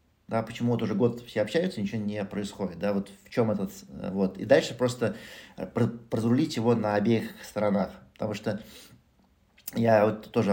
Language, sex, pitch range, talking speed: Russian, male, 100-120 Hz, 160 wpm